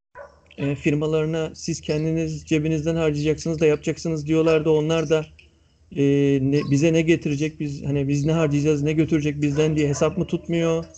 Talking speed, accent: 155 wpm, native